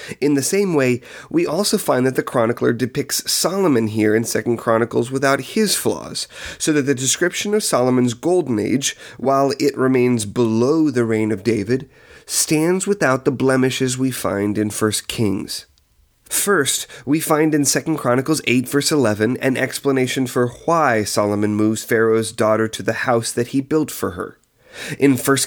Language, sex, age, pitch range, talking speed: English, male, 30-49, 115-140 Hz, 165 wpm